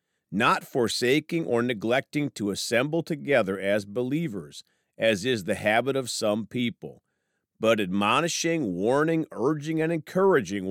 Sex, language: male, English